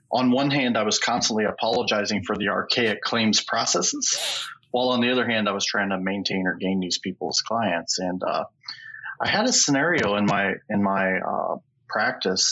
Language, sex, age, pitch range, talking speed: English, male, 30-49, 100-125 Hz, 185 wpm